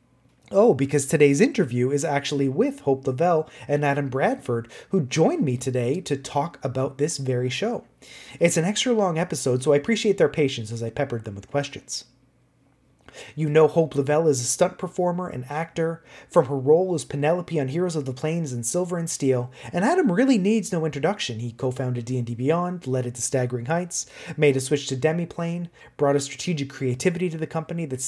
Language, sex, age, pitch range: English, male, 30-49, 130-170 Hz